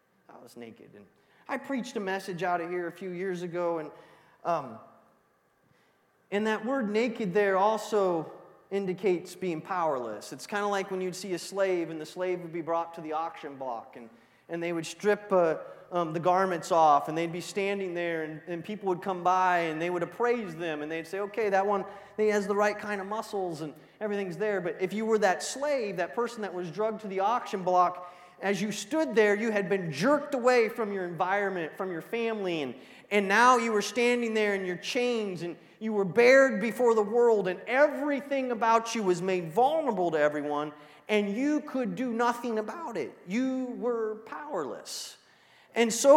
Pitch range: 180-235 Hz